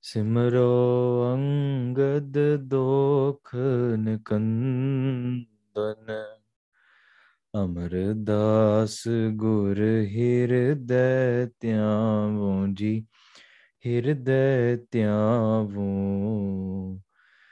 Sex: male